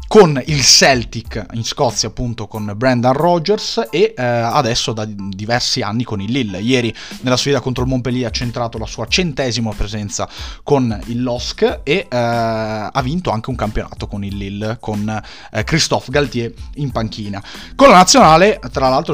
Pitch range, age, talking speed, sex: 110-140 Hz, 30-49, 170 wpm, male